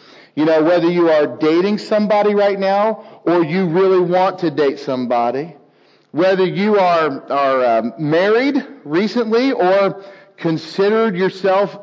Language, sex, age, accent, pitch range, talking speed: English, male, 40-59, American, 155-200 Hz, 130 wpm